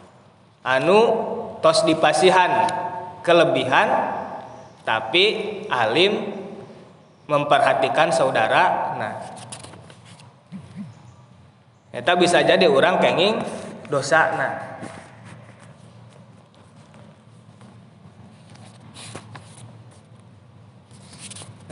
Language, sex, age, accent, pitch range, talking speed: Indonesian, male, 20-39, native, 130-180 Hz, 45 wpm